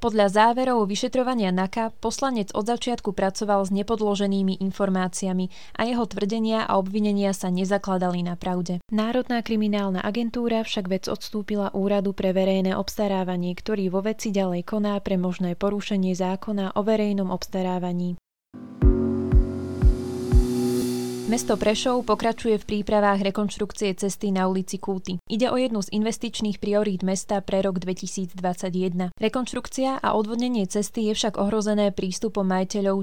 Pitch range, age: 190-220 Hz, 20-39